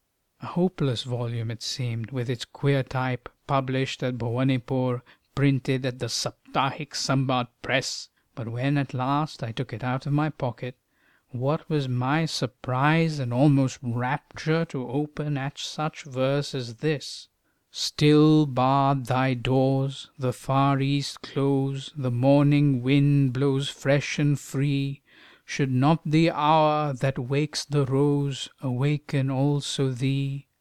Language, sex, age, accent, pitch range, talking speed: English, male, 50-69, Indian, 130-150 Hz, 135 wpm